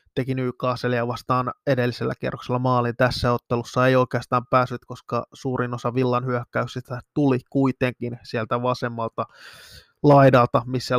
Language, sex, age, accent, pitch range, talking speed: Finnish, male, 20-39, native, 125-140 Hz, 120 wpm